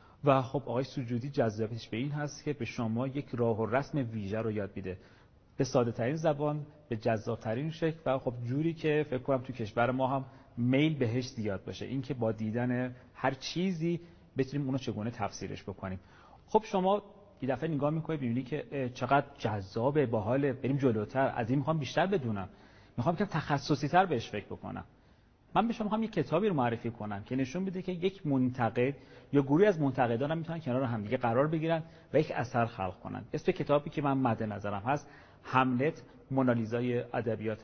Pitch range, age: 115-150 Hz, 40-59